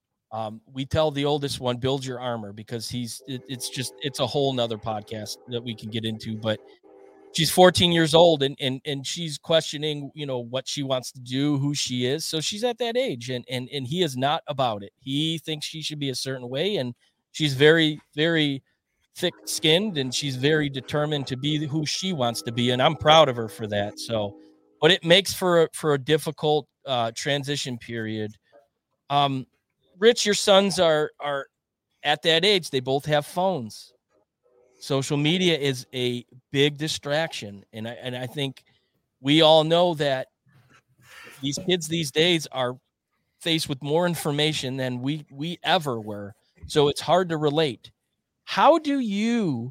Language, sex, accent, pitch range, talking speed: English, male, American, 125-160 Hz, 180 wpm